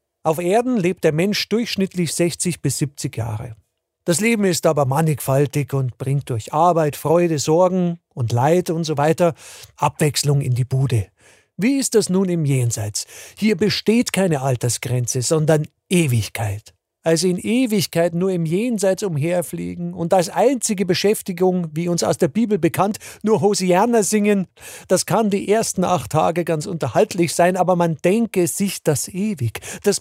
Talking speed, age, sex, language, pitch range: 155 wpm, 50-69, male, German, 145-200 Hz